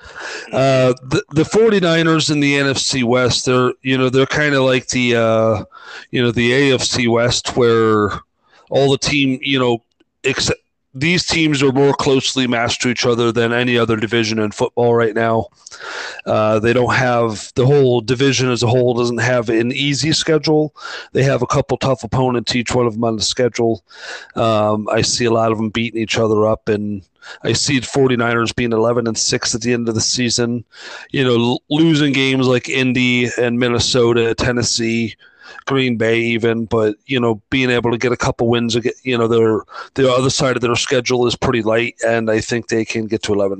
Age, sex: 40-59, male